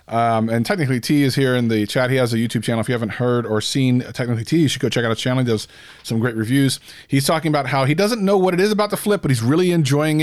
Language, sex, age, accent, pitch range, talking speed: English, male, 30-49, American, 125-165 Hz, 300 wpm